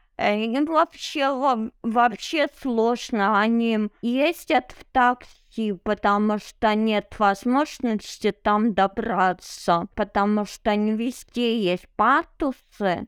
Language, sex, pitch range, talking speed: Russian, female, 200-260 Hz, 90 wpm